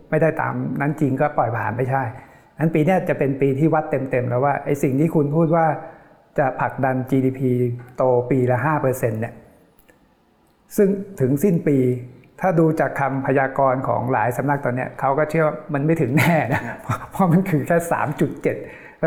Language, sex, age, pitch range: Thai, male, 60-79, 135-160 Hz